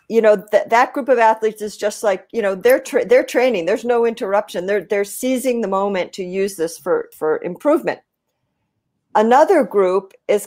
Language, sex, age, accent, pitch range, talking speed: English, female, 50-69, American, 185-235 Hz, 180 wpm